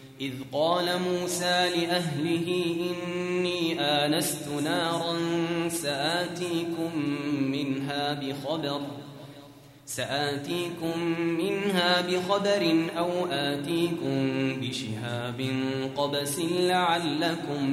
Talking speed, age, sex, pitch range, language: 60 wpm, 20-39, male, 140-180 Hz, Arabic